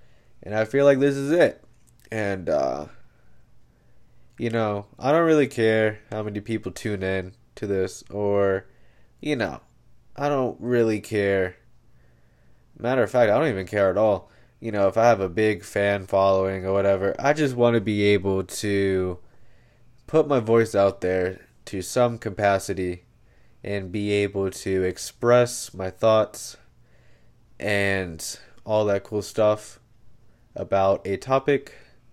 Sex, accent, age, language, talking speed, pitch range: male, American, 20-39, English, 150 wpm, 95-115 Hz